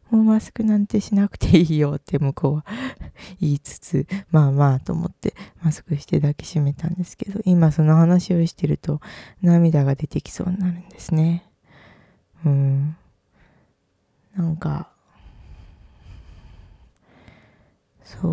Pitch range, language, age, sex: 140-175 Hz, Japanese, 20-39, female